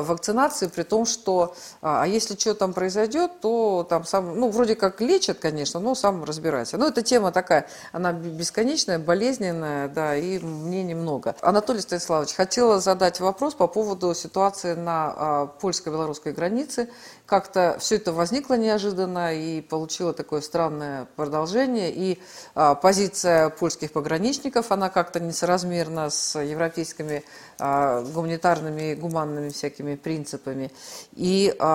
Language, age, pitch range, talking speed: Russian, 50-69, 155-200 Hz, 130 wpm